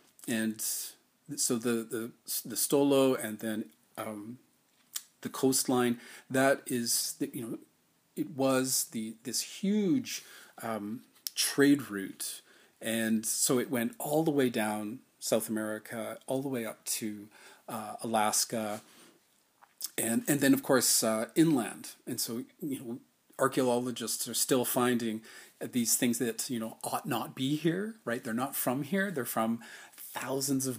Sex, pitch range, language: male, 110-135 Hz, English